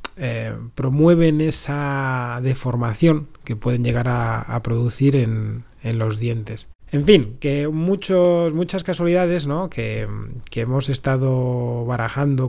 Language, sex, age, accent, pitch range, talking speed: Spanish, male, 30-49, Spanish, 115-145 Hz, 125 wpm